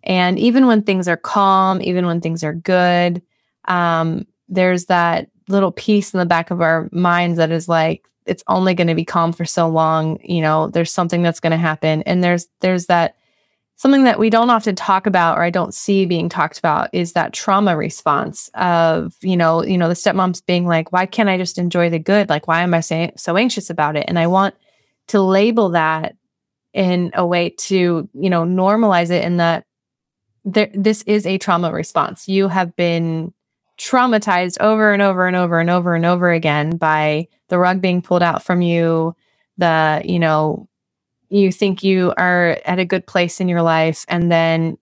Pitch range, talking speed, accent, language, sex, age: 170-200 Hz, 195 wpm, American, English, female, 20-39